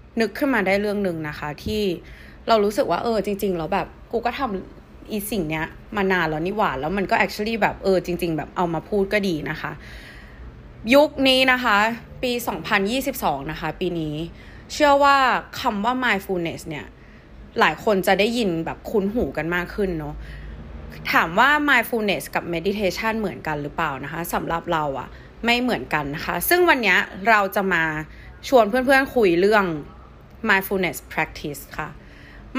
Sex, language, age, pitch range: female, Thai, 20-39, 165-235 Hz